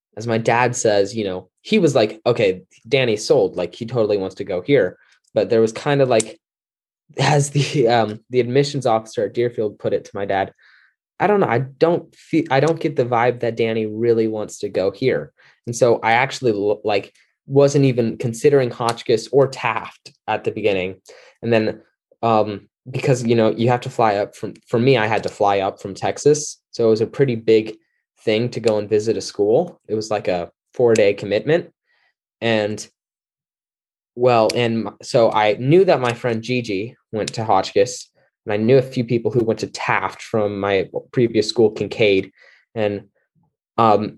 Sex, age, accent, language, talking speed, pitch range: male, 10-29, American, English, 190 wpm, 105-135 Hz